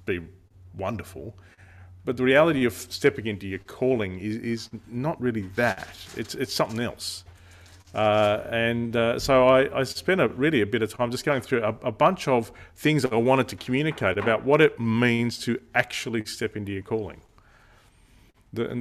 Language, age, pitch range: English, 40-59, 100-125 Hz